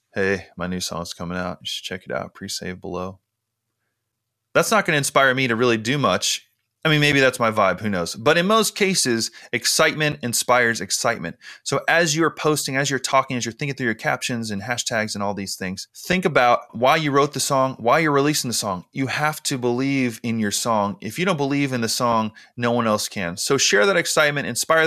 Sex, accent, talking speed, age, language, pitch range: male, American, 225 wpm, 30-49, English, 115-155 Hz